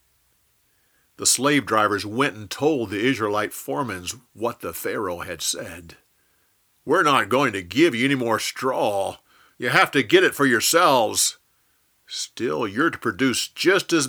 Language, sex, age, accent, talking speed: English, male, 50-69, American, 155 wpm